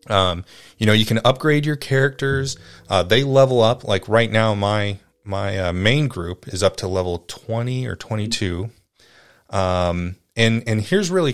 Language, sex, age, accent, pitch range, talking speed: English, male, 30-49, American, 90-120 Hz, 175 wpm